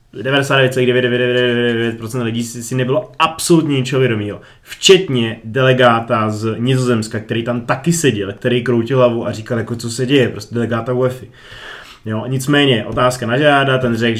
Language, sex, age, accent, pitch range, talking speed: Czech, male, 20-39, native, 120-145 Hz, 140 wpm